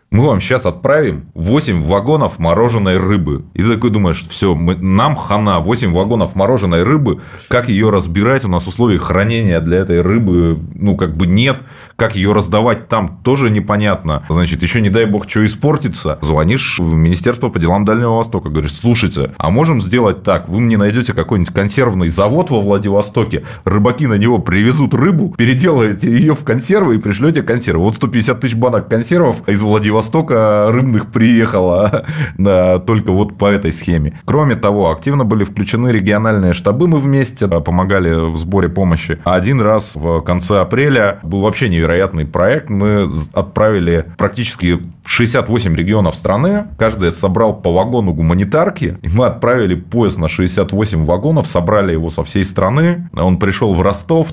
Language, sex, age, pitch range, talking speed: Russian, male, 30-49, 90-120 Hz, 160 wpm